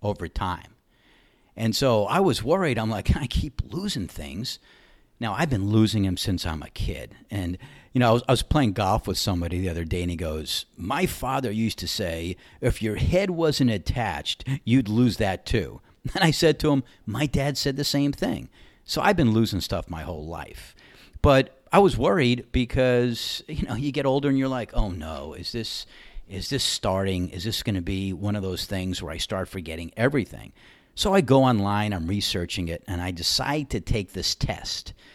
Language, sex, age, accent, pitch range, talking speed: English, male, 50-69, American, 90-125 Hz, 205 wpm